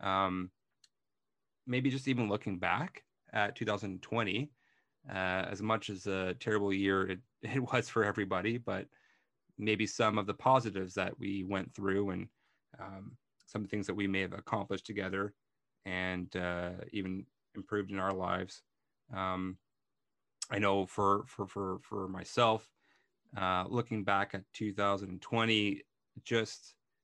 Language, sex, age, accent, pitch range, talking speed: English, male, 30-49, American, 95-110 Hz, 135 wpm